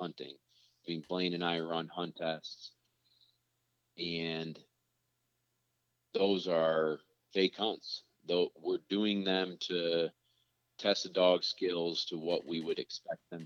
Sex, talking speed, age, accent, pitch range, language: male, 125 wpm, 40-59, American, 80-90 Hz, English